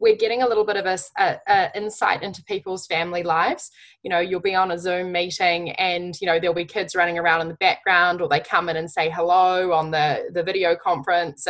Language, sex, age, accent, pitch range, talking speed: English, female, 10-29, Australian, 170-215 Hz, 235 wpm